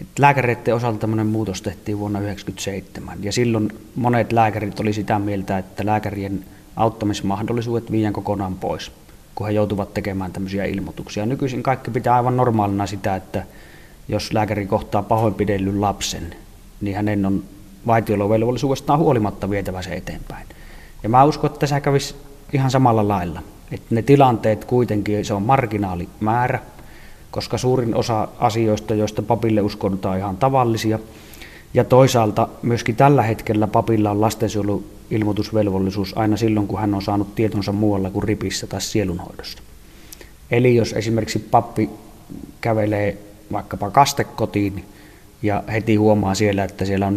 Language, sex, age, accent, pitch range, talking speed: Finnish, male, 30-49, native, 100-115 Hz, 135 wpm